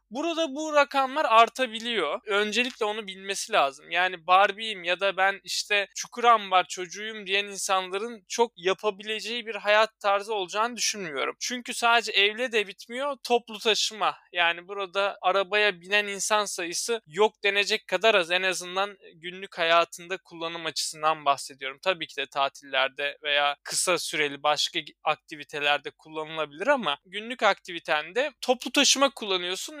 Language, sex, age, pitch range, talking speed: Turkish, male, 20-39, 175-230 Hz, 135 wpm